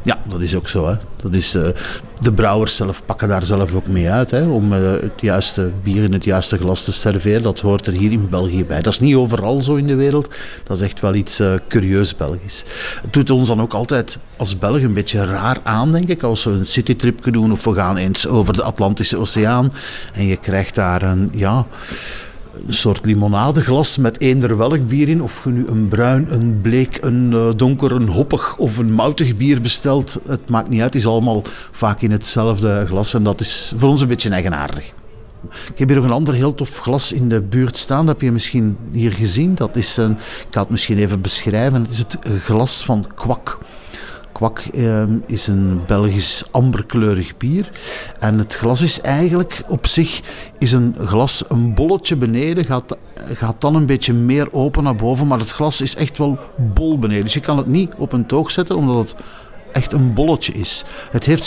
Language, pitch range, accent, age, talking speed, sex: Dutch, 105-130 Hz, Dutch, 50-69, 210 wpm, male